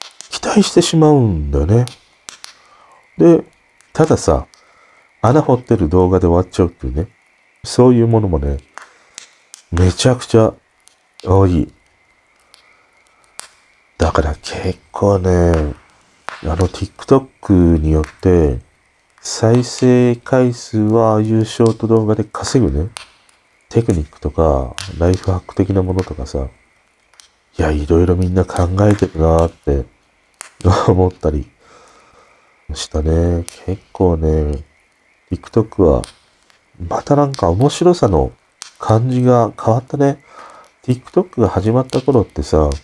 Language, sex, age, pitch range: Japanese, male, 40-59, 80-115 Hz